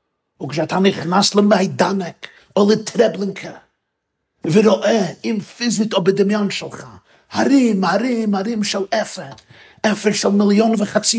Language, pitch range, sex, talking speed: Hebrew, 155-210 Hz, male, 105 wpm